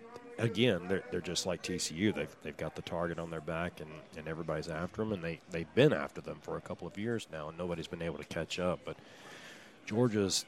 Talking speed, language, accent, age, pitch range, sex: 230 wpm, English, American, 30-49, 85-105 Hz, male